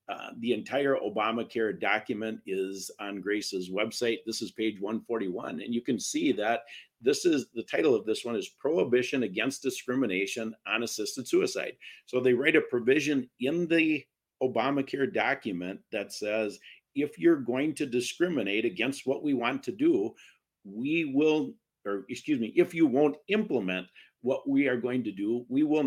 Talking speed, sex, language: 165 wpm, male, English